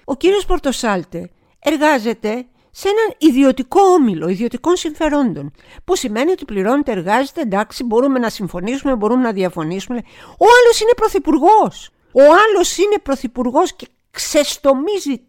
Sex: female